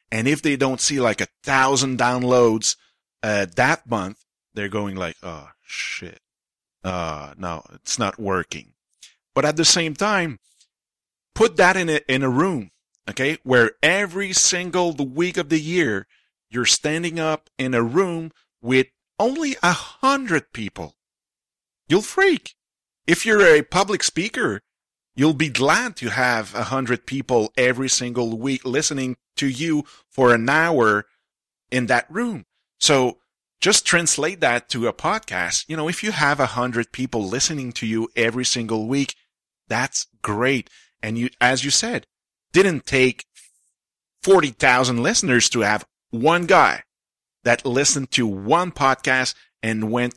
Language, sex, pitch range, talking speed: French, male, 115-155 Hz, 150 wpm